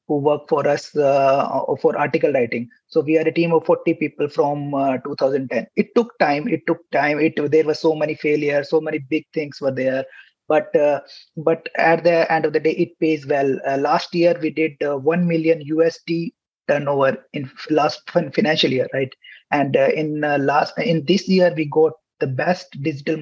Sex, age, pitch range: male, 30-49, 145-165 Hz